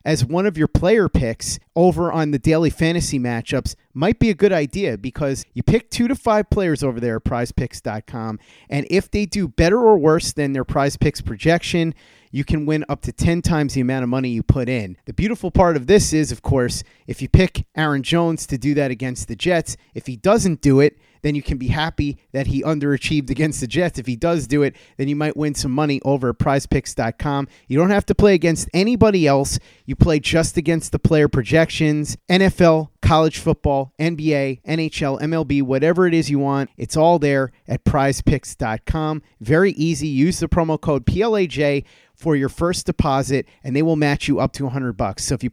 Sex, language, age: male, English, 30-49